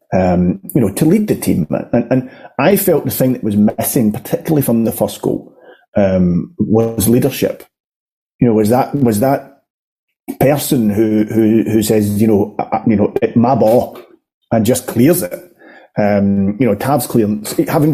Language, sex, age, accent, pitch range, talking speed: English, male, 30-49, British, 105-140 Hz, 155 wpm